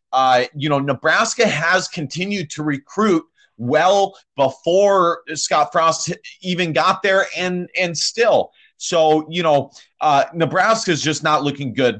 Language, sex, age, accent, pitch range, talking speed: English, male, 30-49, American, 140-180 Hz, 140 wpm